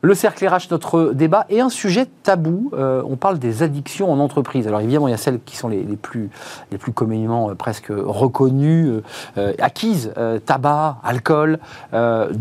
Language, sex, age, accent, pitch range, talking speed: French, male, 40-59, French, 115-155 Hz, 175 wpm